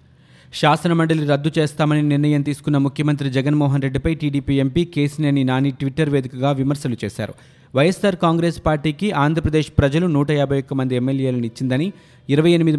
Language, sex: Telugu, male